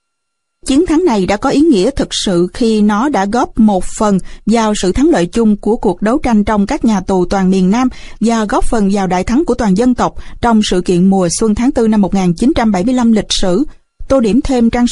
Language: Vietnamese